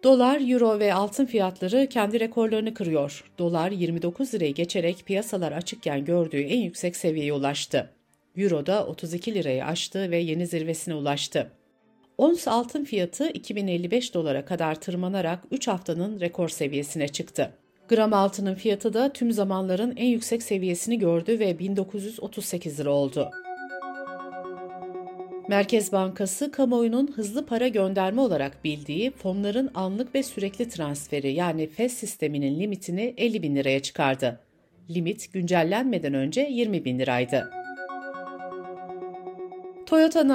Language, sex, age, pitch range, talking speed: Turkish, female, 60-79, 160-230 Hz, 120 wpm